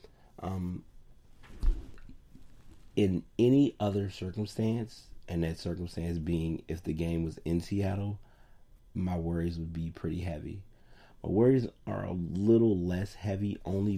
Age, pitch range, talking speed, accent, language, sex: 30-49, 85-100 Hz, 125 wpm, American, English, male